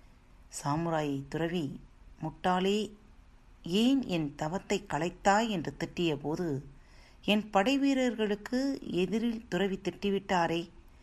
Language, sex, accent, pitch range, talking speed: Tamil, female, native, 155-215 Hz, 75 wpm